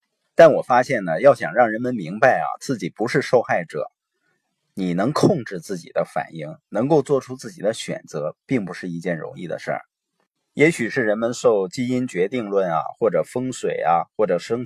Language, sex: Chinese, male